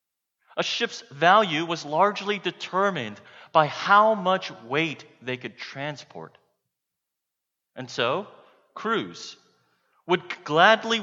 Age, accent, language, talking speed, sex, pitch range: 30-49, American, English, 100 wpm, male, 120-180 Hz